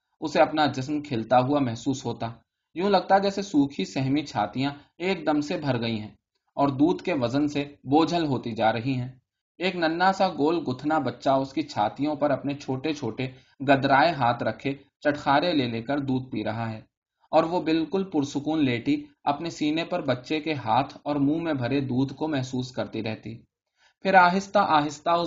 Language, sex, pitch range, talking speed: Urdu, male, 125-155 Hz, 110 wpm